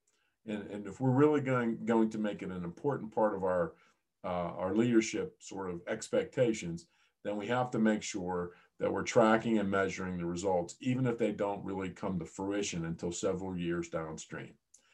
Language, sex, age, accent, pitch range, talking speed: English, male, 50-69, American, 95-120 Hz, 180 wpm